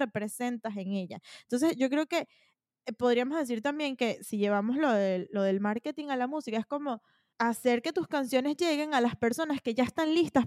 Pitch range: 225-290 Hz